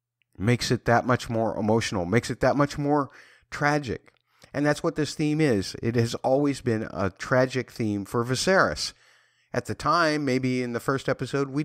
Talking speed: 185 wpm